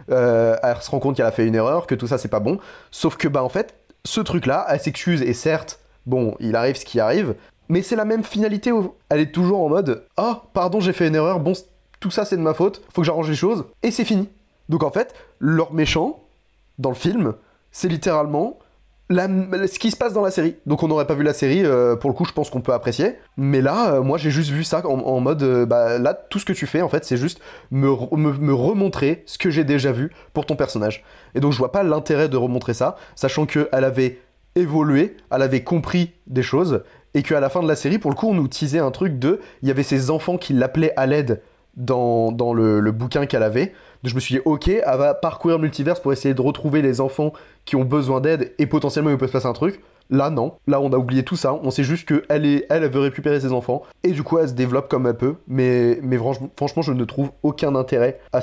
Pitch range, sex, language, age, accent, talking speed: 130-170 Hz, male, French, 20-39, French, 255 wpm